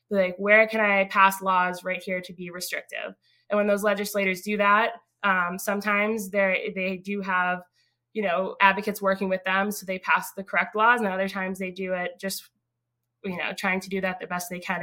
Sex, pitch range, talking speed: female, 180-205 Hz, 205 wpm